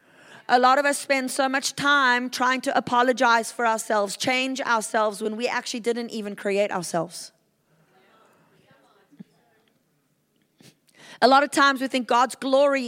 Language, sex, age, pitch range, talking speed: English, female, 30-49, 200-245 Hz, 140 wpm